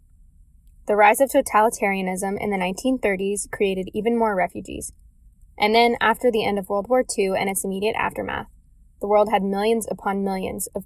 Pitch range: 180-220 Hz